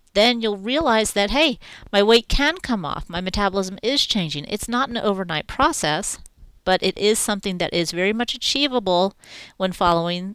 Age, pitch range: 40-59, 175-230 Hz